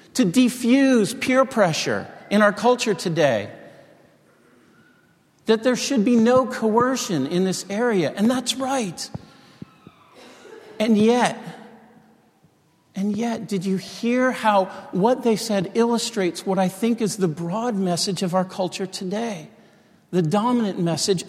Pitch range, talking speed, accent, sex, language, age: 155-210 Hz, 130 wpm, American, male, English, 50-69